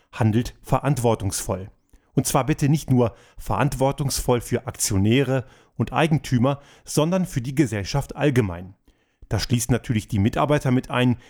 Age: 30-49